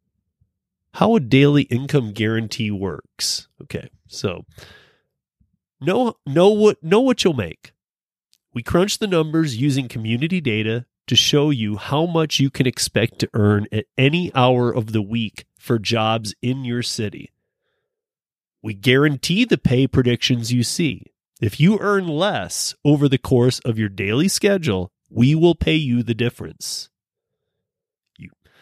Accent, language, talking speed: American, English, 140 wpm